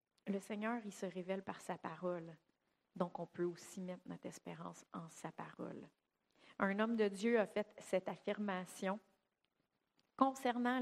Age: 40-59